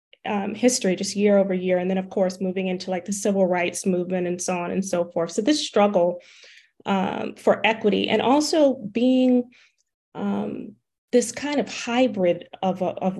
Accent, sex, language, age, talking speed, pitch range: American, female, English, 30-49, 180 wpm, 185-220 Hz